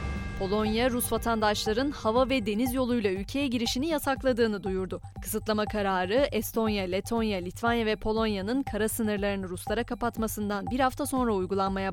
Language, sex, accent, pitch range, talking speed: Turkish, female, native, 195-250 Hz, 130 wpm